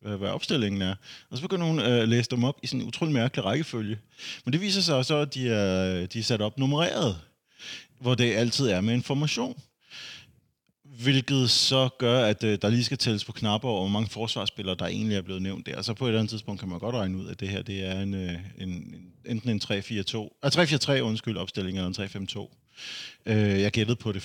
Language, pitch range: Danish, 100-120 Hz